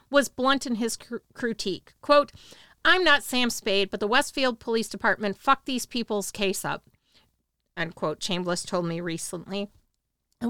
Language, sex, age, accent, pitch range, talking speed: English, female, 40-59, American, 205-255 Hz, 150 wpm